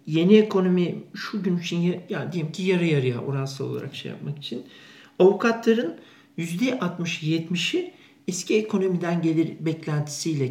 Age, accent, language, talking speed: 50-69, native, Turkish, 125 wpm